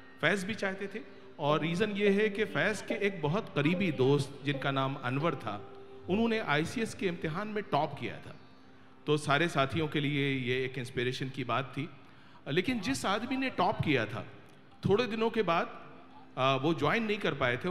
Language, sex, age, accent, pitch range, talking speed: Hindi, male, 40-59, native, 130-180 Hz, 185 wpm